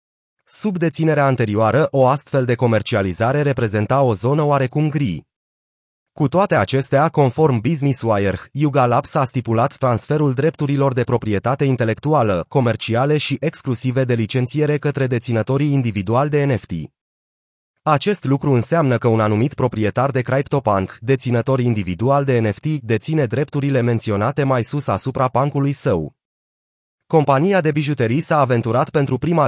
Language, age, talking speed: Romanian, 30-49, 130 wpm